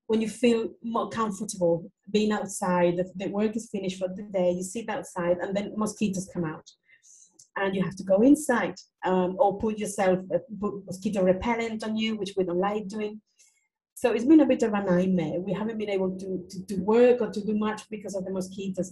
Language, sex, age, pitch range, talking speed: English, female, 30-49, 185-220 Hz, 210 wpm